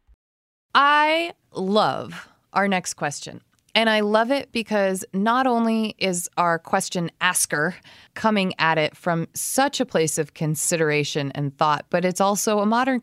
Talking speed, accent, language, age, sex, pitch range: 145 wpm, American, English, 20-39, female, 150-215 Hz